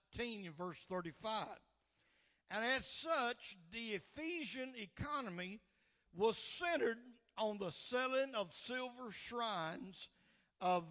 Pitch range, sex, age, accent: 185-245 Hz, male, 60-79, American